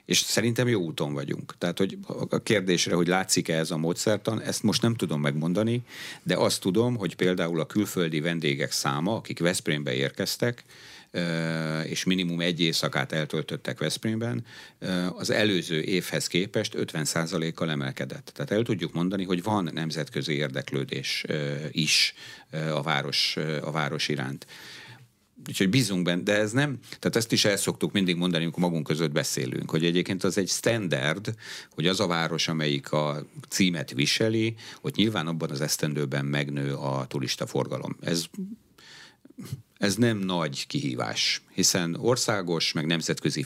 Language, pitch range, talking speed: Hungarian, 75-100 Hz, 145 wpm